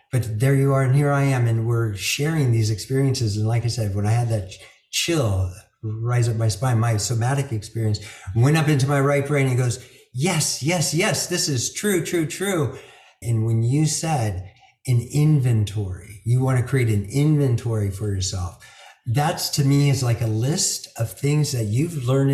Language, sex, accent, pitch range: English, male, American, 115-145 Hz